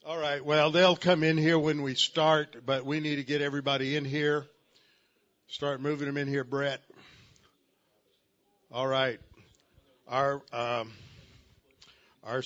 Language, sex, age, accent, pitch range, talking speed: English, male, 60-79, American, 120-145 Hz, 135 wpm